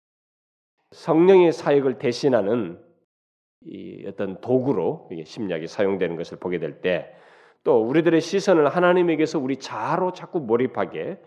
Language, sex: Korean, male